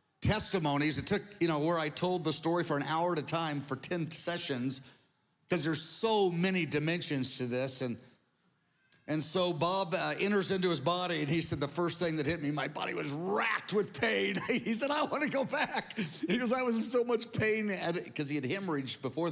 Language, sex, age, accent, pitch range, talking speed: English, male, 50-69, American, 140-180 Hz, 215 wpm